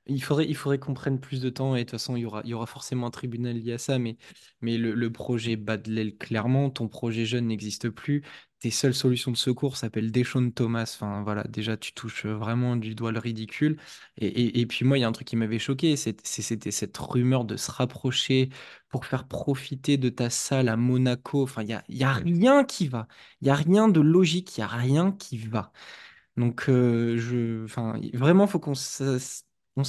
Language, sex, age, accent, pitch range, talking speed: French, male, 20-39, French, 115-135 Hz, 235 wpm